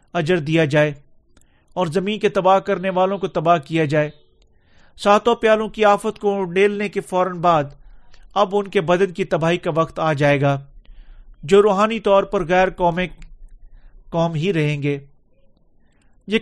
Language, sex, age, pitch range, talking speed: Urdu, male, 40-59, 160-205 Hz, 160 wpm